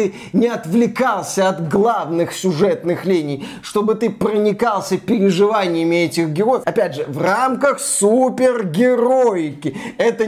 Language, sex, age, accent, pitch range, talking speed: Russian, male, 20-39, native, 175-225 Hz, 105 wpm